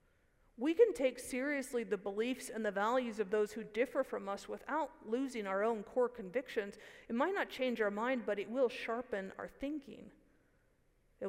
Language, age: English, 50-69